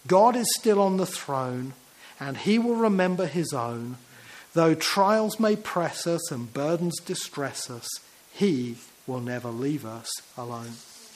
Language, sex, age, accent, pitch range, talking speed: English, male, 40-59, British, 140-210 Hz, 145 wpm